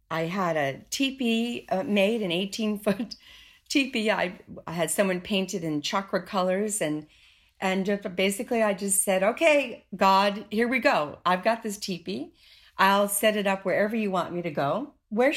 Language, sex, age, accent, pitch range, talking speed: English, female, 50-69, American, 170-225 Hz, 160 wpm